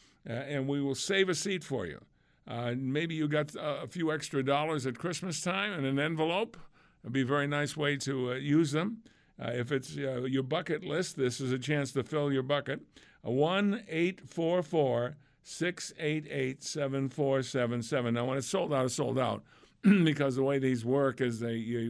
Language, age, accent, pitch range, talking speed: English, 50-69, American, 125-155 Hz, 190 wpm